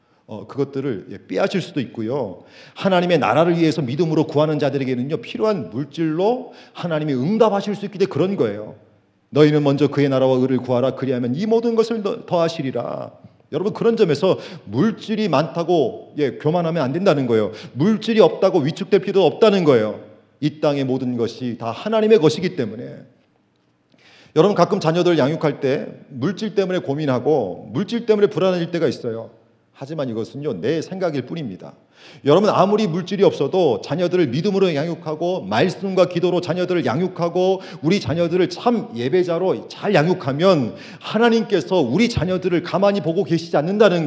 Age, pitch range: 40-59, 140-195 Hz